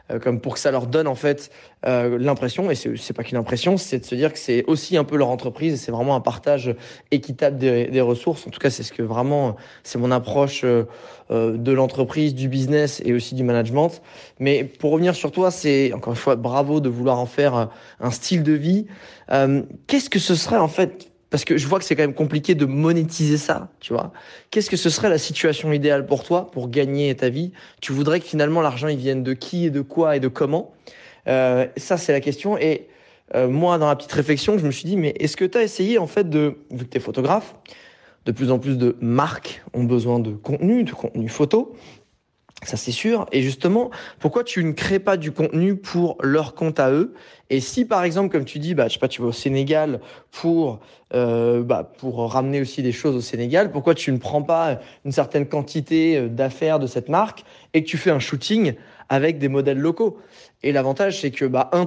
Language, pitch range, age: French, 130-165 Hz, 20-39